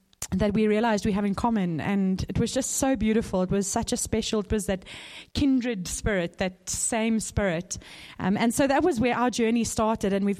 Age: 30-49